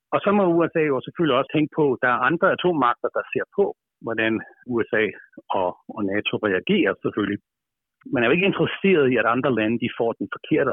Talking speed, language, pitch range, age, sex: 195 wpm, Danish, 120-160 Hz, 60-79, male